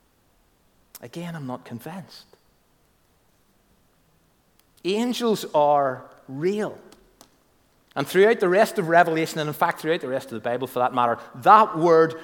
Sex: male